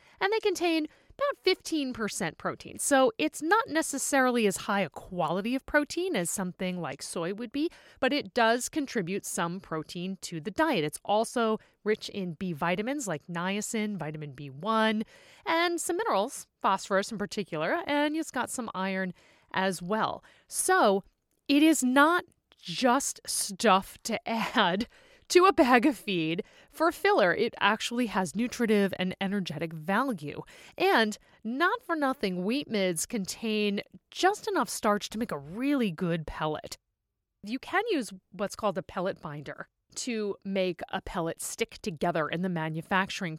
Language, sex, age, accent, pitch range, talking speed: English, female, 30-49, American, 185-270 Hz, 150 wpm